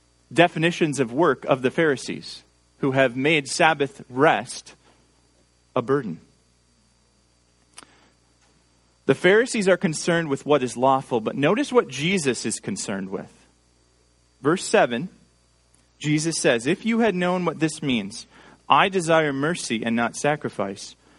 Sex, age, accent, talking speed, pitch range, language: male, 30-49, American, 125 wpm, 110-185 Hz, English